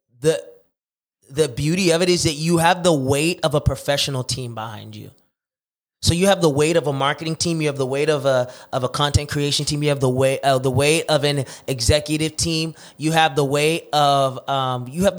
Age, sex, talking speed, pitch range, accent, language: 20-39, male, 220 wpm, 135-170 Hz, American, English